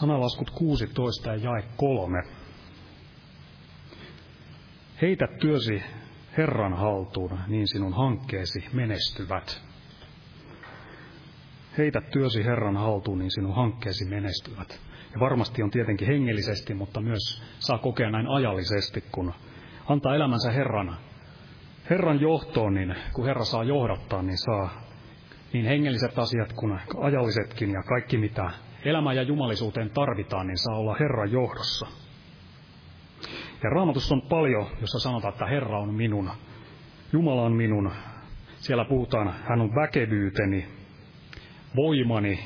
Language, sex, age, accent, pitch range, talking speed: Finnish, male, 30-49, native, 105-135 Hz, 110 wpm